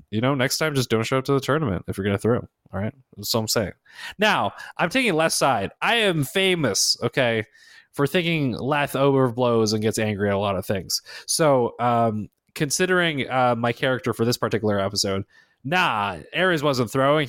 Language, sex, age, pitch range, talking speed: English, male, 20-39, 115-160 Hz, 200 wpm